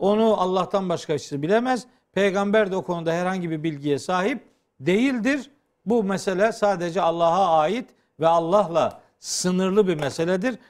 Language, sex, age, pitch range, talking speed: Turkish, male, 50-69, 145-215 Hz, 135 wpm